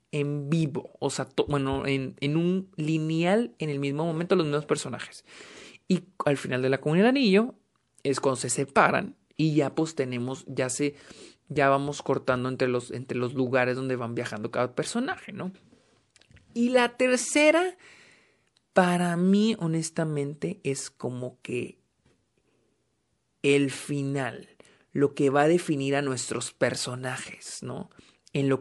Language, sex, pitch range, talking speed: Spanish, male, 135-165 Hz, 145 wpm